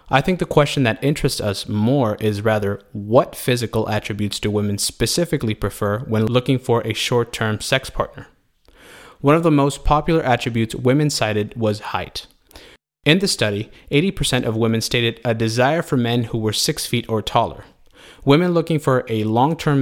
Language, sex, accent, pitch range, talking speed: English, male, American, 110-140 Hz, 170 wpm